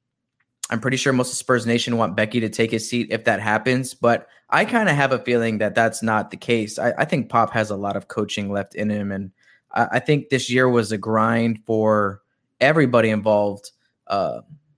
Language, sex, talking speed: English, male, 215 wpm